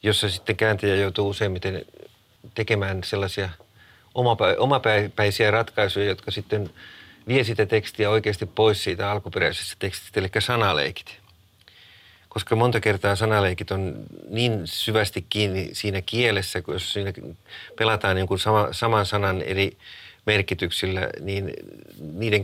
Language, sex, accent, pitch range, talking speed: Finnish, male, native, 100-110 Hz, 115 wpm